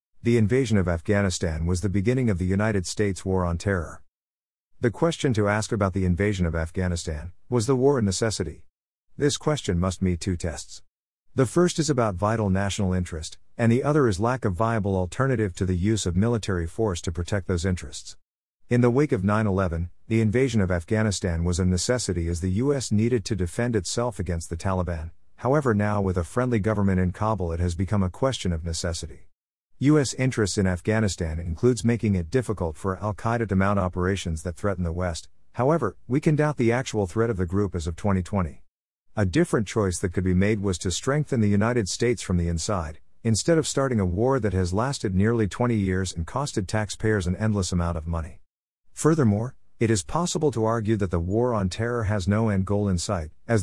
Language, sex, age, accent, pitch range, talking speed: English, male, 50-69, American, 90-115 Hz, 200 wpm